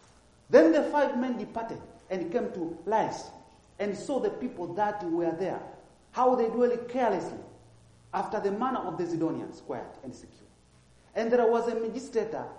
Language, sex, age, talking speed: English, male, 40-59, 160 wpm